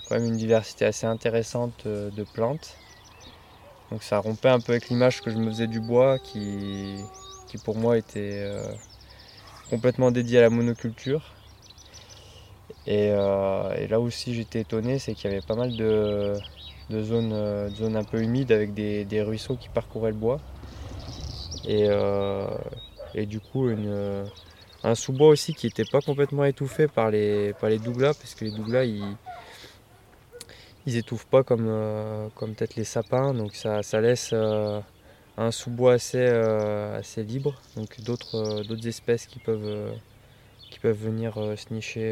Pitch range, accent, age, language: 105-120 Hz, French, 20-39, French